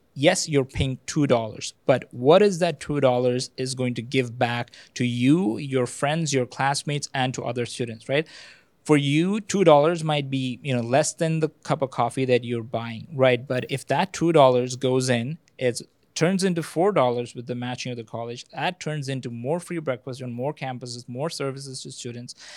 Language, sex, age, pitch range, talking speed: English, male, 20-39, 125-145 Hz, 190 wpm